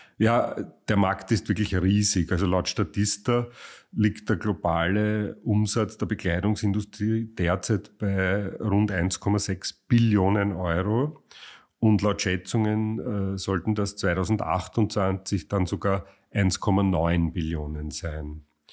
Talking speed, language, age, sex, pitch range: 105 wpm, German, 40-59, male, 85-105 Hz